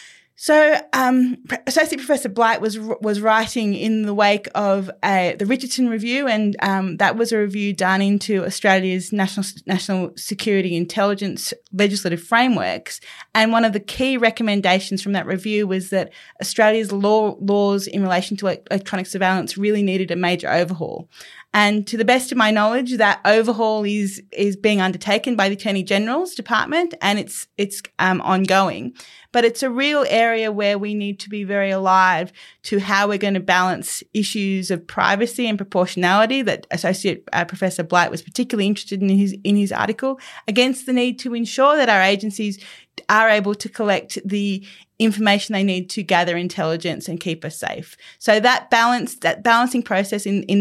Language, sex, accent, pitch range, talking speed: English, female, Australian, 190-220 Hz, 170 wpm